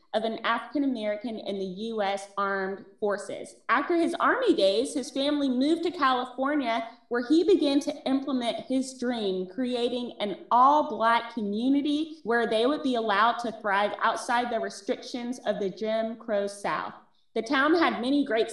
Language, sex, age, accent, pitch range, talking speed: English, female, 30-49, American, 220-285 Hz, 160 wpm